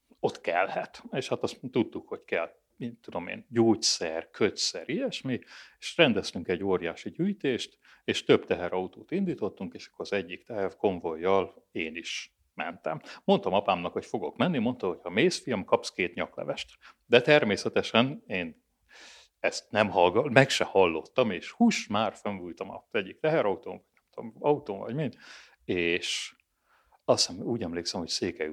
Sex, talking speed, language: male, 145 wpm, Hungarian